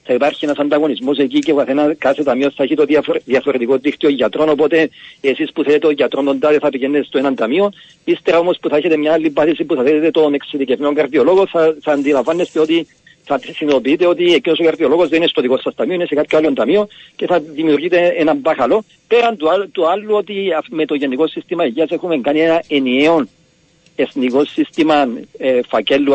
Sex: male